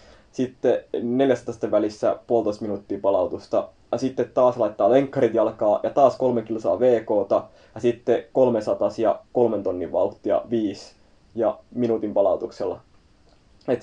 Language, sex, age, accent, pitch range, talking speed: Finnish, male, 20-39, native, 110-130 Hz, 125 wpm